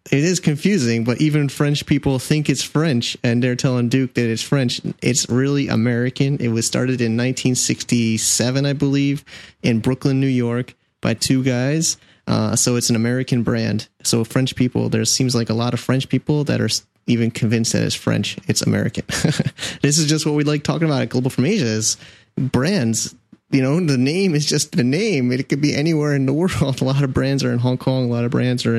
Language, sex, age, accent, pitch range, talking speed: English, male, 30-49, American, 115-140 Hz, 215 wpm